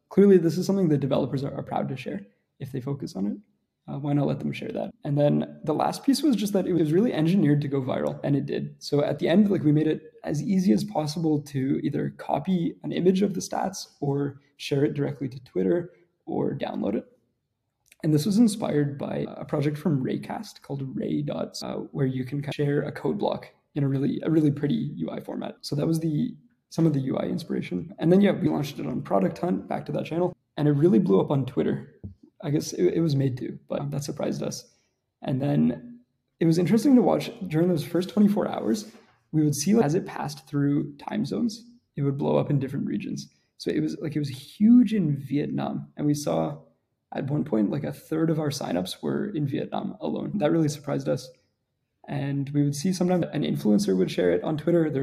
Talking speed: 230 wpm